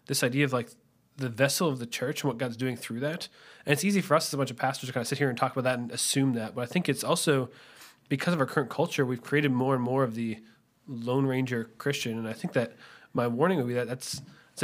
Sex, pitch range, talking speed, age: male, 125-145 Hz, 275 wpm, 20-39